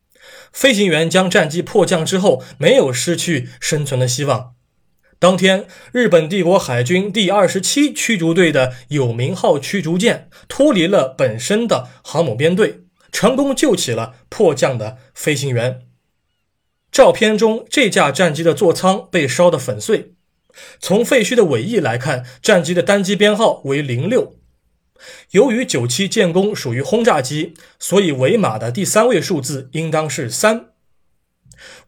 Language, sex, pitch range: Chinese, male, 130-190 Hz